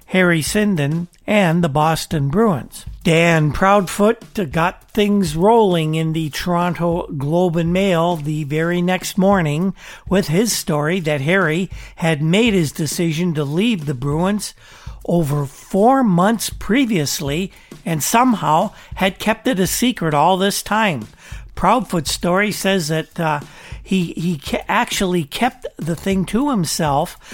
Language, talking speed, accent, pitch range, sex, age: English, 135 wpm, American, 165-200 Hz, male, 60-79